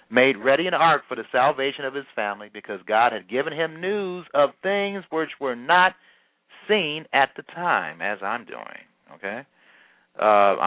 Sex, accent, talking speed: male, American, 170 wpm